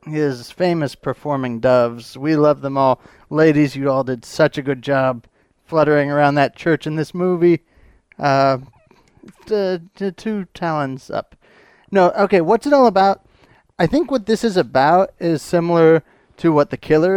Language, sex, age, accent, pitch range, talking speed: English, male, 30-49, American, 130-170 Hz, 165 wpm